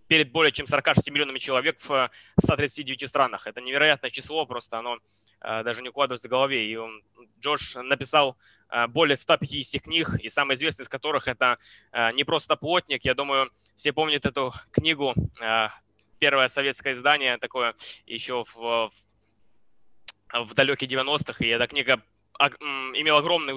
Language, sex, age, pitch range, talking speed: Russian, male, 20-39, 120-150 Hz, 140 wpm